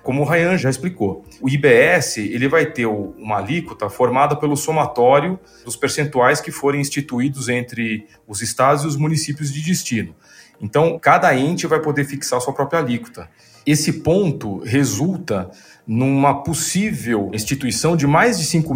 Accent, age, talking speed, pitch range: Brazilian, 40-59, 155 wpm, 110-155 Hz